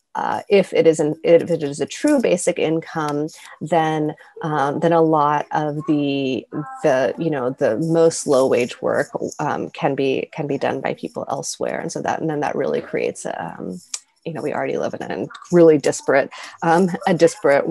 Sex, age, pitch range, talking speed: female, 30-49, 155-225 Hz, 195 wpm